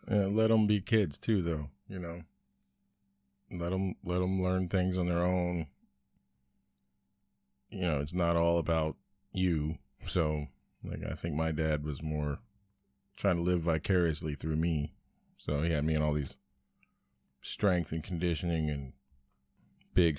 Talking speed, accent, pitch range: 150 wpm, American, 75-95 Hz